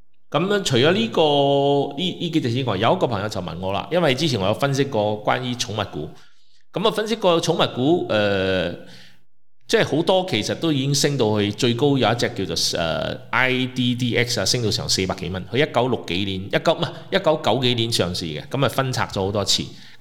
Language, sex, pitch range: Chinese, male, 100-155 Hz